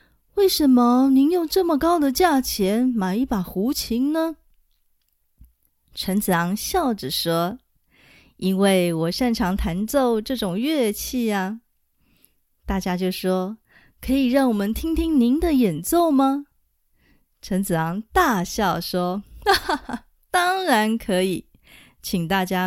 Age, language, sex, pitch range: 20-39, Chinese, female, 185-270 Hz